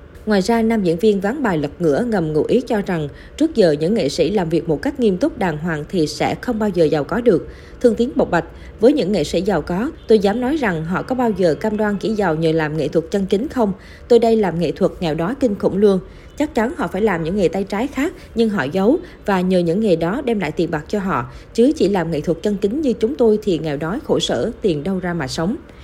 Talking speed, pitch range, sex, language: 275 wpm, 165-225 Hz, female, Vietnamese